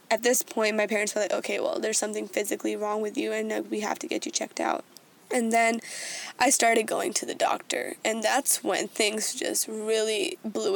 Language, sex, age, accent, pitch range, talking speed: English, female, 10-29, American, 210-240 Hz, 210 wpm